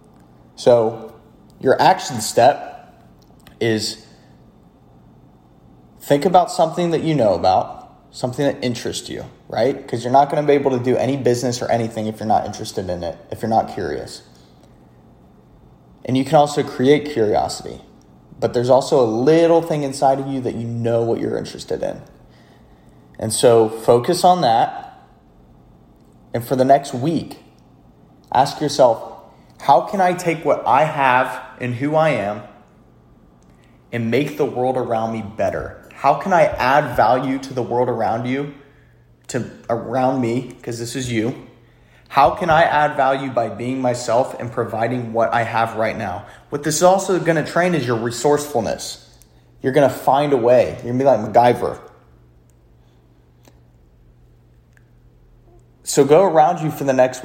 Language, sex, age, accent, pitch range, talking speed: English, male, 30-49, American, 110-140 Hz, 160 wpm